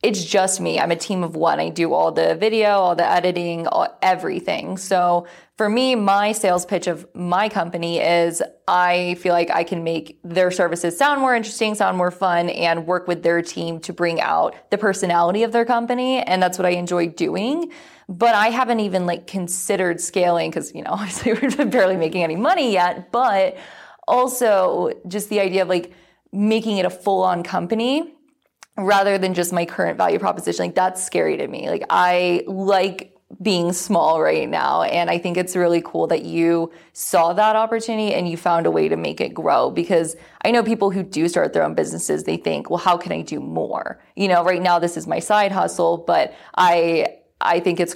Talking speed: 205 wpm